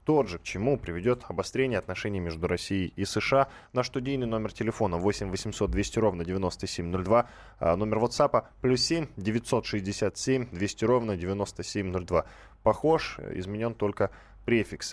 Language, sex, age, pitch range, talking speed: Russian, male, 10-29, 100-125 Hz, 135 wpm